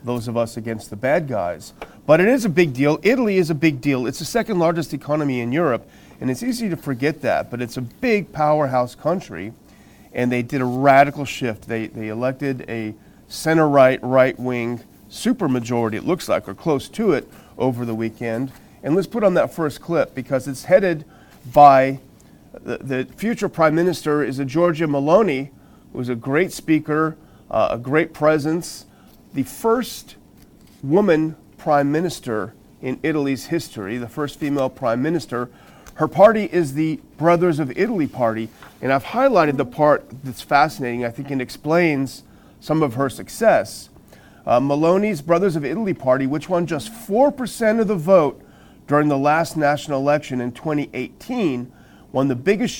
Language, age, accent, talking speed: English, 40-59, American, 165 wpm